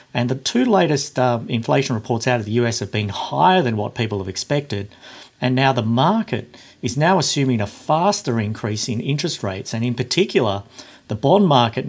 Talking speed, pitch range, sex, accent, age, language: 190 wpm, 115-140 Hz, male, Australian, 50-69, English